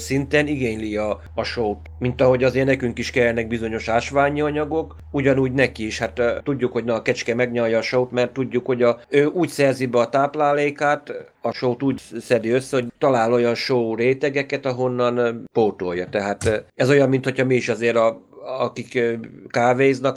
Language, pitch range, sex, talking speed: Hungarian, 115-130 Hz, male, 185 wpm